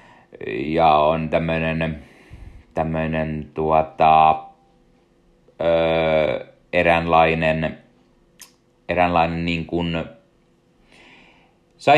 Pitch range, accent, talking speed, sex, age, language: 80-90 Hz, native, 55 wpm, male, 30-49, Finnish